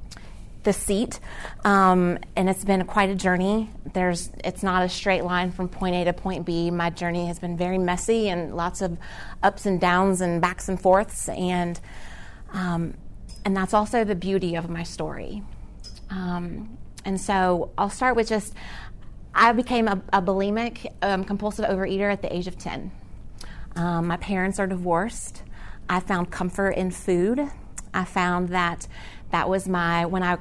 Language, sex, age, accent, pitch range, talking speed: English, female, 30-49, American, 160-195 Hz, 170 wpm